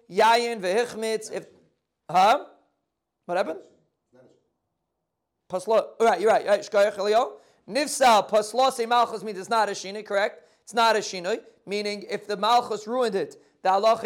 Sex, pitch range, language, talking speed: male, 195-235 Hz, English, 130 wpm